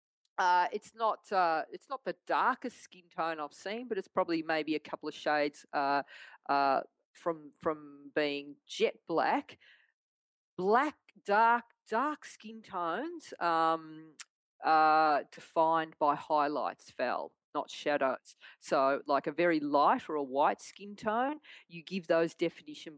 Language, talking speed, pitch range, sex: English, 140 wpm, 155-185 Hz, female